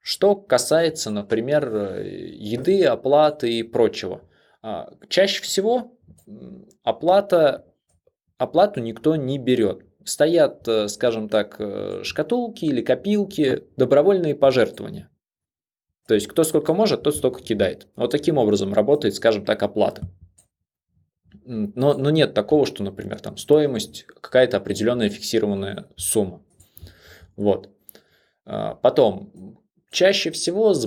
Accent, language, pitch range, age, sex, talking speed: native, Russian, 105-150 Hz, 20-39, male, 105 wpm